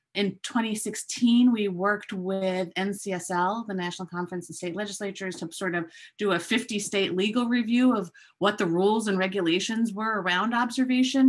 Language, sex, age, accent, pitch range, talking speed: English, female, 30-49, American, 175-220 Hz, 155 wpm